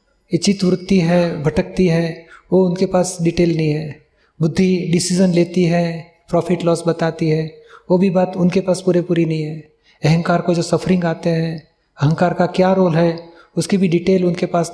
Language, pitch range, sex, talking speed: Gujarati, 165-200 Hz, male, 110 wpm